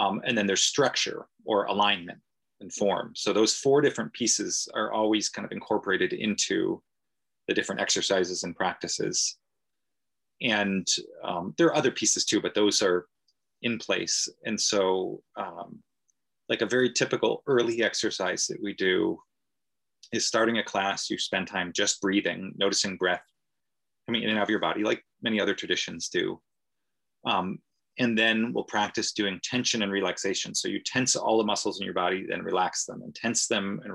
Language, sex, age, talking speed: English, male, 30-49, 170 wpm